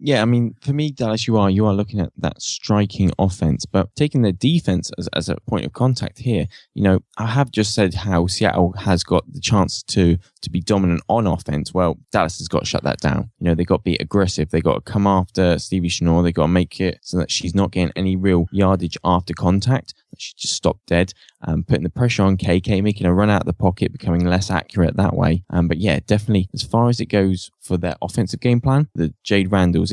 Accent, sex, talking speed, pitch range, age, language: British, male, 245 wpm, 90-115 Hz, 10-29, English